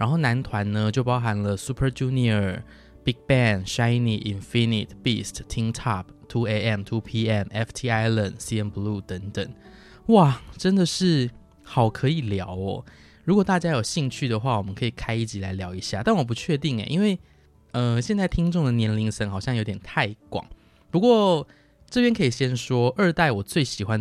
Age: 20-39